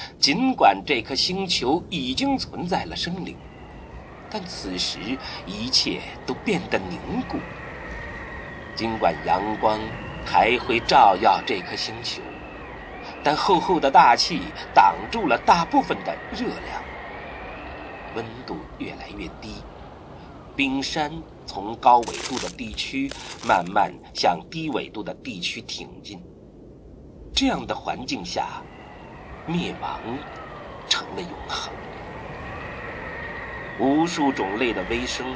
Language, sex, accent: Chinese, male, native